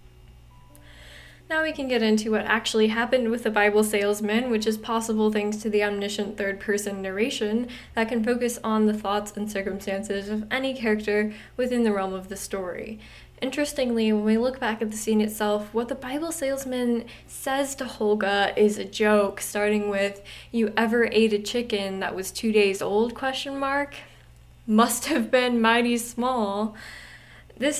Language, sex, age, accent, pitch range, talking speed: English, female, 10-29, American, 200-230 Hz, 165 wpm